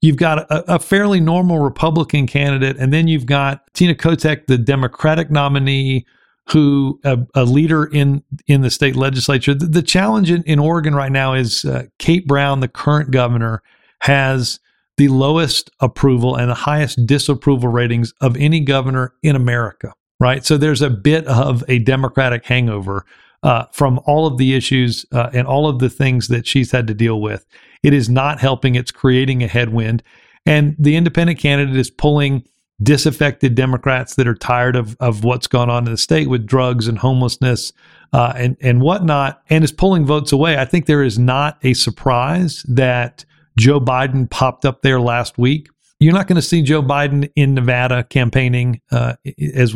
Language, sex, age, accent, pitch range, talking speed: English, male, 50-69, American, 125-150 Hz, 180 wpm